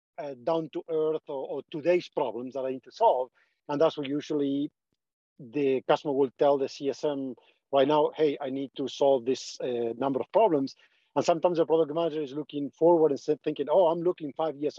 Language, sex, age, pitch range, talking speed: English, male, 50-69, 140-165 Hz, 205 wpm